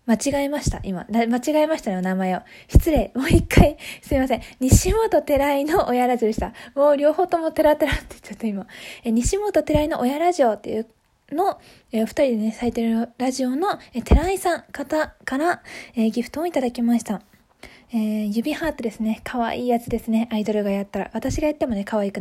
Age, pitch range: 20-39, 240-310 Hz